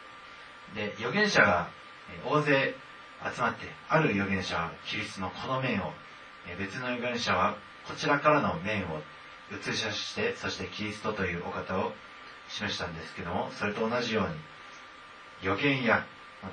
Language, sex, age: Japanese, male, 30-49